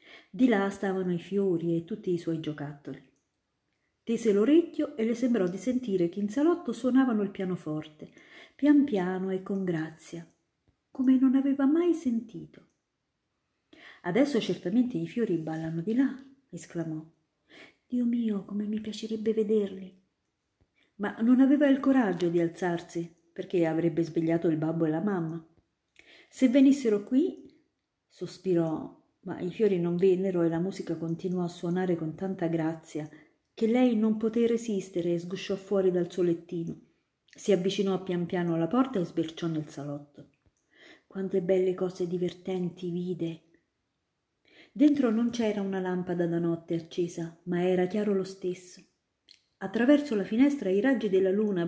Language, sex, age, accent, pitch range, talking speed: Italian, female, 50-69, native, 170-230 Hz, 145 wpm